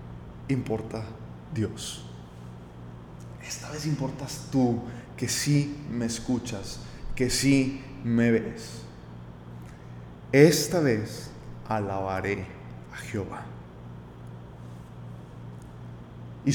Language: Spanish